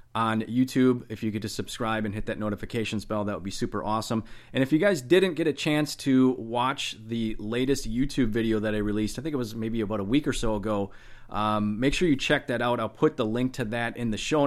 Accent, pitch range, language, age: American, 105-125 Hz, English, 30-49